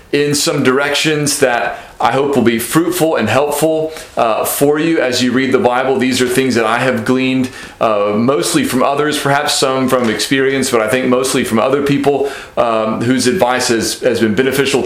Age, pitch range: 30-49, 120-145 Hz